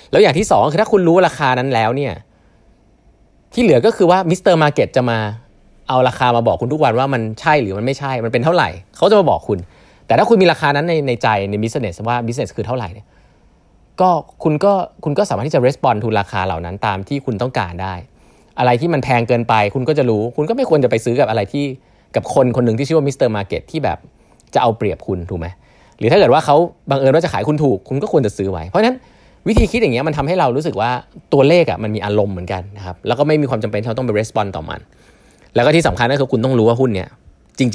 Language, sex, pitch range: Thai, male, 100-145 Hz